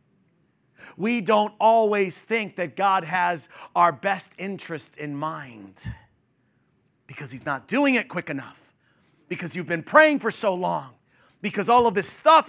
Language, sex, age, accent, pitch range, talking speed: English, male, 30-49, American, 195-270 Hz, 150 wpm